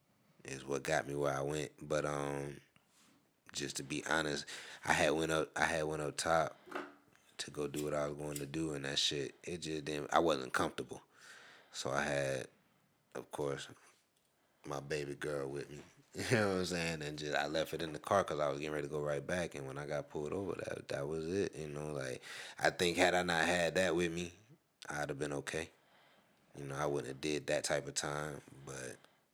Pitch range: 70-85 Hz